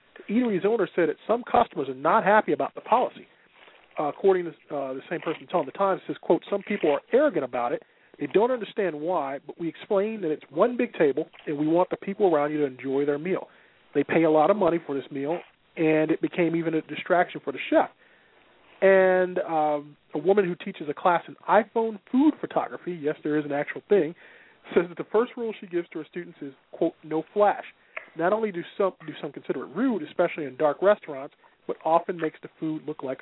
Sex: male